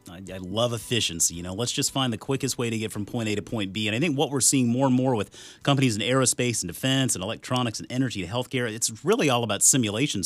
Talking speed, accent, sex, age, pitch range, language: 265 wpm, American, male, 30-49, 105-130 Hz, English